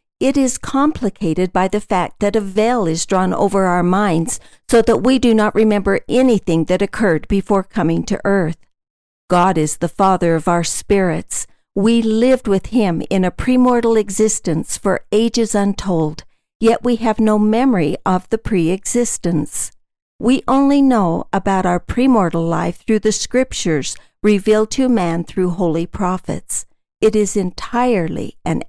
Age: 50-69